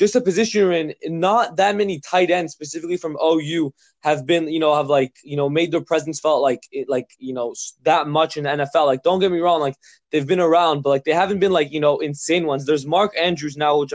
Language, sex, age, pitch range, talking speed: English, male, 20-39, 140-175 Hz, 255 wpm